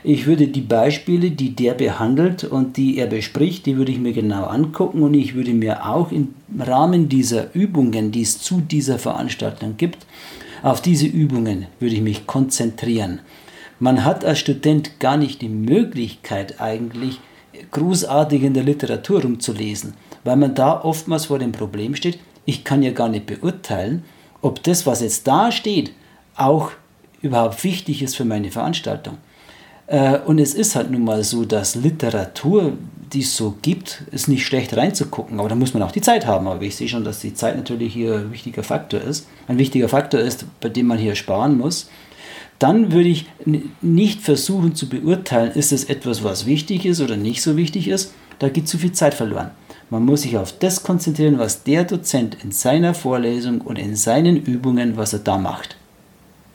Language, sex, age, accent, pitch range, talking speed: German, male, 50-69, German, 115-155 Hz, 180 wpm